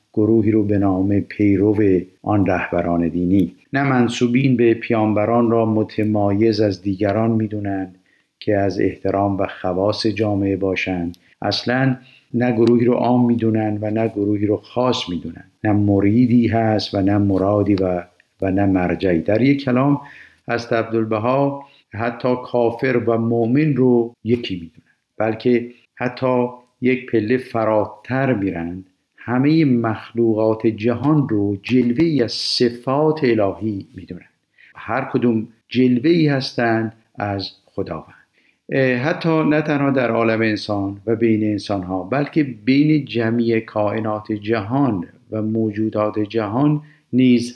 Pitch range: 105-125 Hz